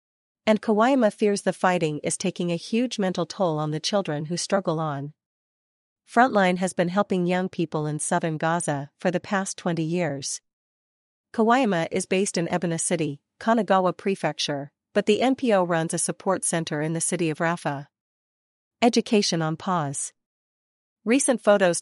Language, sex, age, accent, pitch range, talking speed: English, female, 40-59, American, 160-200 Hz, 155 wpm